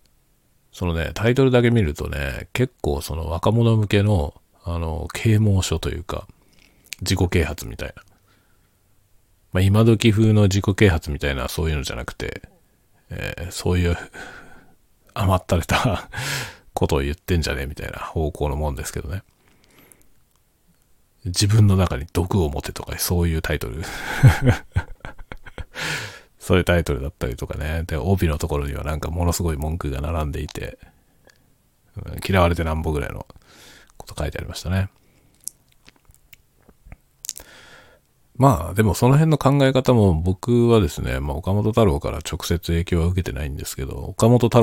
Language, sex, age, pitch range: Japanese, male, 40-59, 75-100 Hz